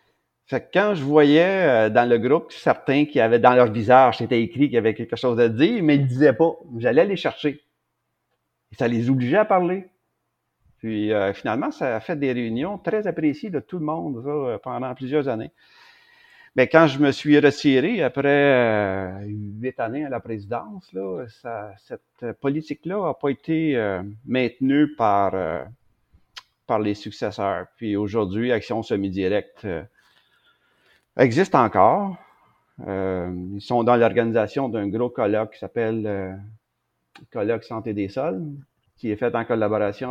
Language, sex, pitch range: French, male, 105-145 Hz